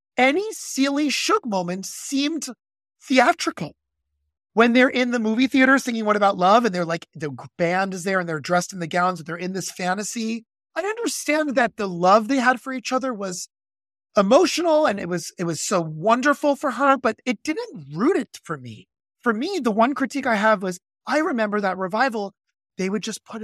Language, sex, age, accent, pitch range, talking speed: English, male, 30-49, American, 185-270 Hz, 200 wpm